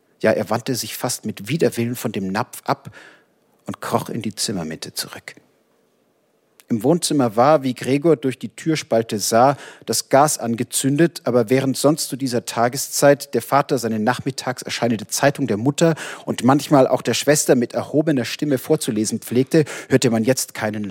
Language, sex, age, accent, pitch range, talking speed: German, male, 40-59, German, 115-145 Hz, 165 wpm